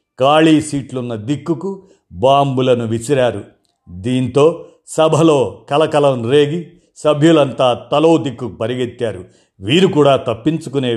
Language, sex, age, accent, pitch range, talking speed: Telugu, male, 50-69, native, 125-160 Hz, 90 wpm